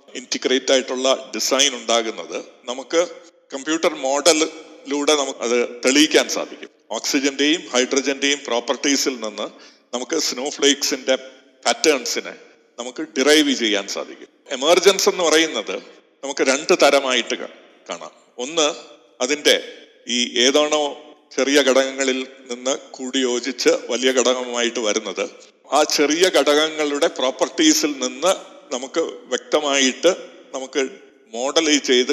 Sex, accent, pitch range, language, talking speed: male, native, 130-160 Hz, Malayalam, 95 wpm